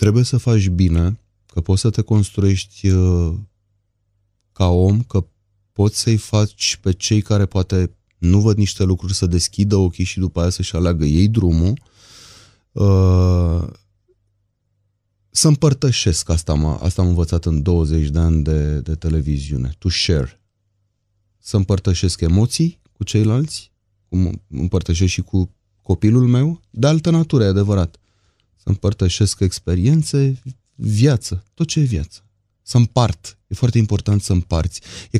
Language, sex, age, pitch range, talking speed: Romanian, male, 30-49, 90-110 Hz, 140 wpm